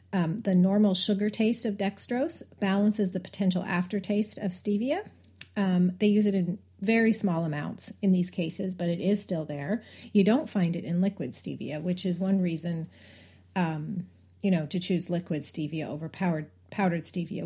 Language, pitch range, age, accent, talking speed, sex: English, 170-210 Hz, 40-59, American, 175 wpm, female